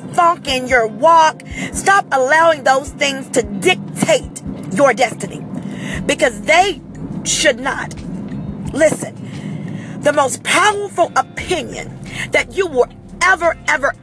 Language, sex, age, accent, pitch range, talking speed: English, female, 40-59, American, 255-330 Hz, 110 wpm